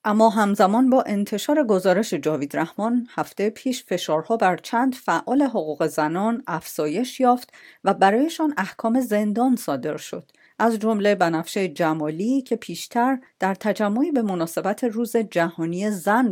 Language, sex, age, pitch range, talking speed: Persian, female, 40-59, 175-235 Hz, 130 wpm